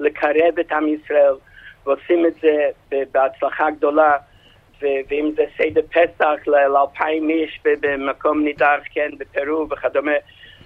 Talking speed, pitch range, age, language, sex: 120 wpm, 145-175 Hz, 50-69, Hebrew, male